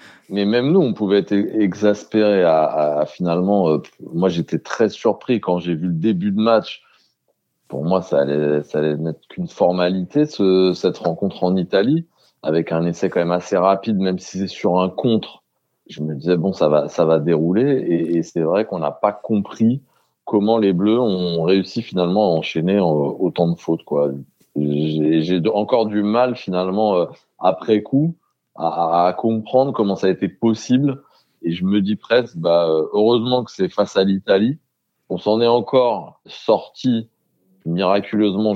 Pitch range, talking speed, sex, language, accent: 90-120 Hz, 175 wpm, male, French, French